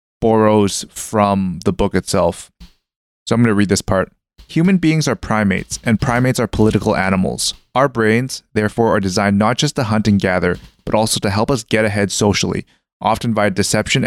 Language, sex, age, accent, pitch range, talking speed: English, male, 20-39, American, 105-120 Hz, 185 wpm